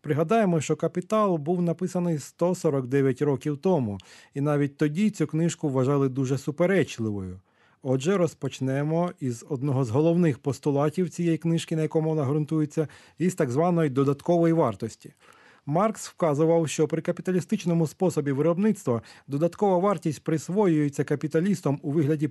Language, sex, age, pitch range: Ukrainian, male, 30-49, 135-170 Hz